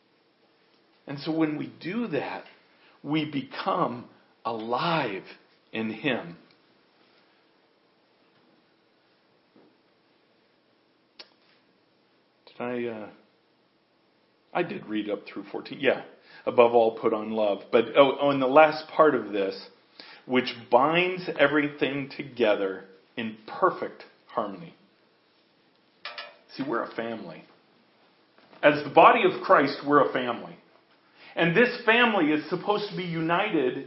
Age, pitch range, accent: 50-69, 135-205 Hz, American